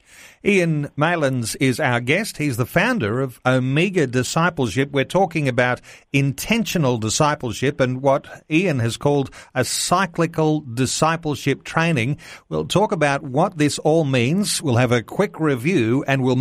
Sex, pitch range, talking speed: male, 125-155 Hz, 145 wpm